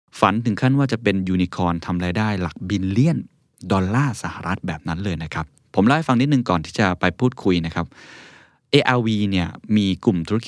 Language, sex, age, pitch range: Thai, male, 20-39, 90-115 Hz